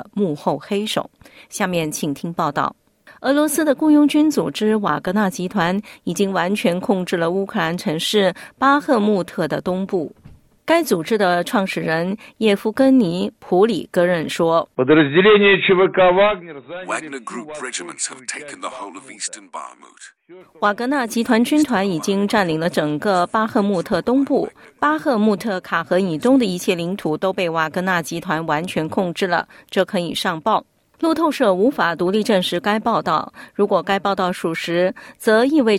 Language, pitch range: Chinese, 175-225 Hz